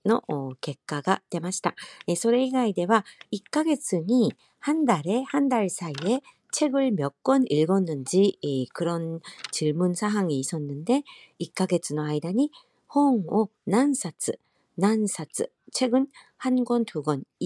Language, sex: Korean, female